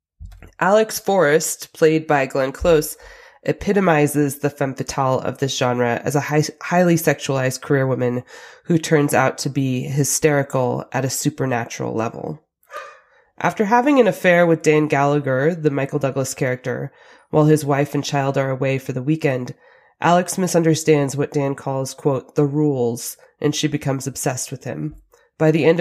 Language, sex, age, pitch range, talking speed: English, female, 20-39, 135-160 Hz, 155 wpm